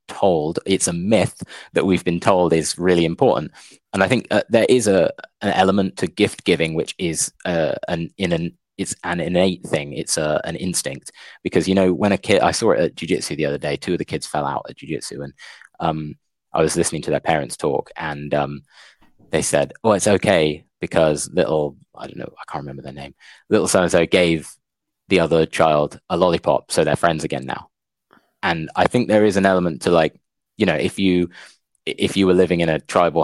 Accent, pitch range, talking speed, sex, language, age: British, 80-95 Hz, 215 wpm, male, English, 20-39